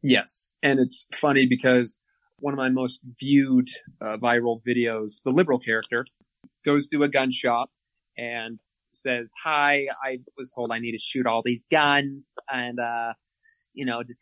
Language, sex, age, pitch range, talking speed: English, male, 20-39, 115-135 Hz, 165 wpm